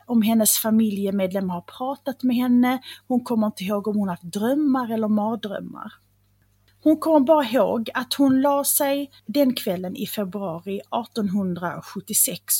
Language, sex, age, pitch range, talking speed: Swedish, female, 30-49, 190-260 Hz, 145 wpm